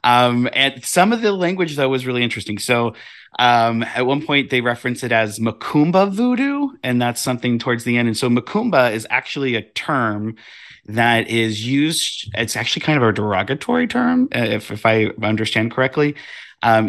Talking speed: 180 wpm